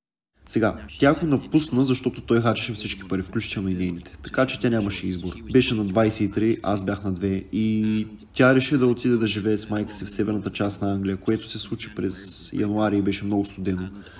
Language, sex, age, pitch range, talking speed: Bulgarian, male, 20-39, 100-120 Hz, 205 wpm